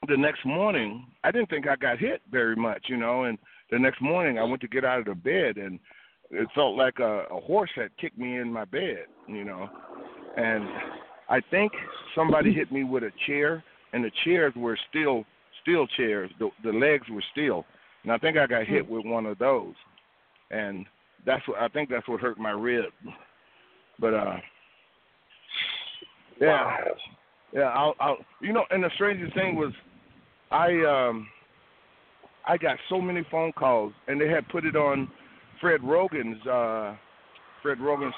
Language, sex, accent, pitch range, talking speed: English, male, American, 115-155 Hz, 180 wpm